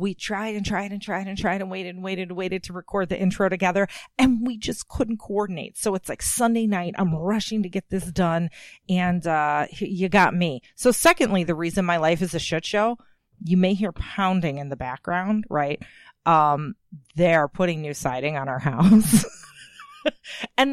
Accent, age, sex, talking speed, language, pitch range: American, 30-49, female, 195 wpm, English, 155-205 Hz